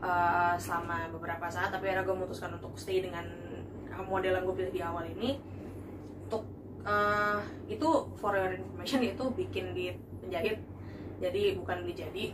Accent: native